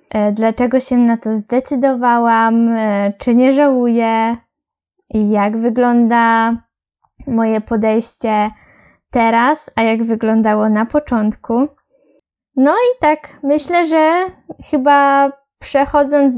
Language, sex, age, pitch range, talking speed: Polish, female, 10-29, 225-270 Hz, 90 wpm